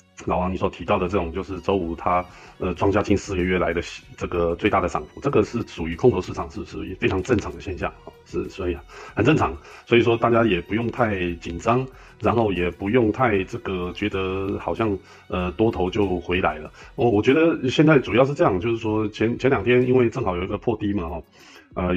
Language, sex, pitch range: Chinese, male, 90-105 Hz